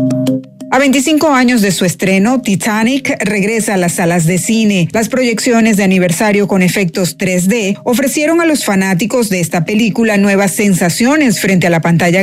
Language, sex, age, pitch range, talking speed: Spanish, female, 40-59, 180-245 Hz, 160 wpm